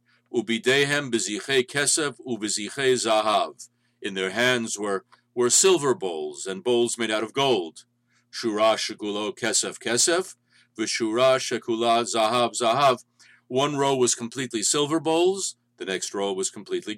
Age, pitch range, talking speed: 50-69, 115-140 Hz, 110 wpm